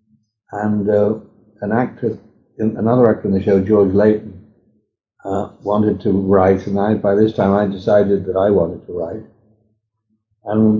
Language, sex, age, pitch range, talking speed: English, male, 60-79, 105-115 Hz, 155 wpm